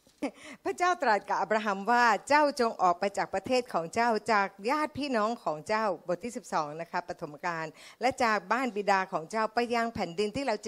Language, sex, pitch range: Thai, female, 190-255 Hz